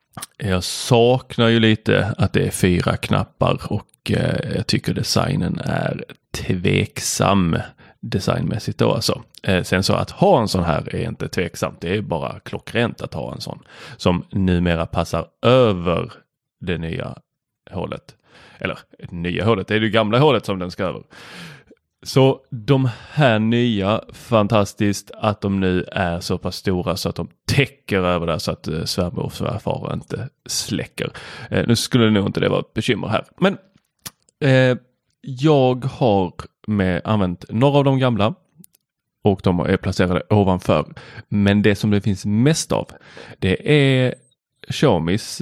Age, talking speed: 20-39, 150 wpm